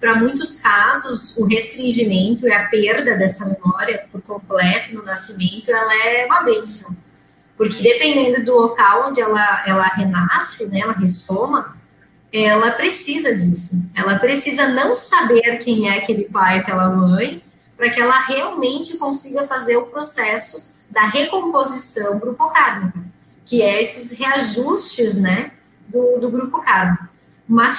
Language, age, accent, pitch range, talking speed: Portuguese, 20-39, Brazilian, 205-270 Hz, 135 wpm